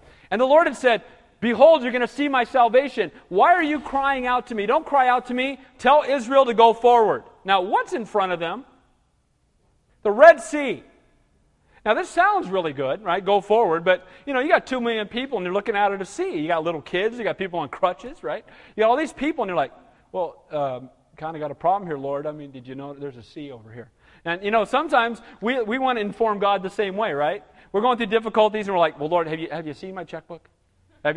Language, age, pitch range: English, 40-59, 150-240 Hz